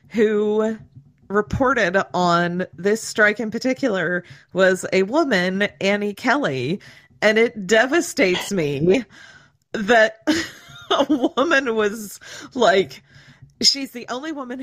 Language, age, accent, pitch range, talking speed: English, 40-59, American, 165-230 Hz, 105 wpm